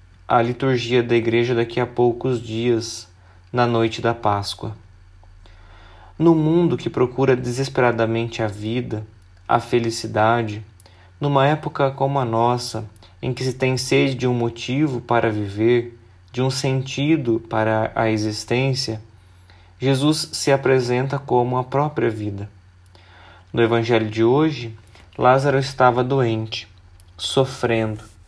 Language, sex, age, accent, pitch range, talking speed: Portuguese, male, 20-39, Brazilian, 105-130 Hz, 120 wpm